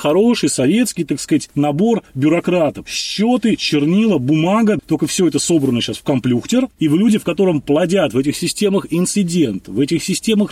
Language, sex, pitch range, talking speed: Russian, male, 145-200 Hz, 165 wpm